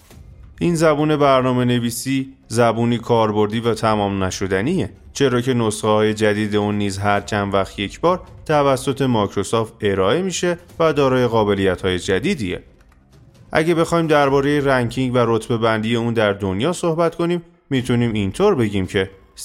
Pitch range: 100-130 Hz